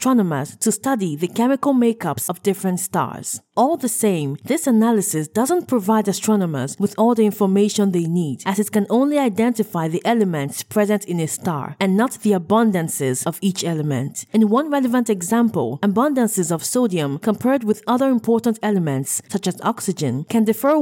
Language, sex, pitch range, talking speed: English, female, 175-235 Hz, 165 wpm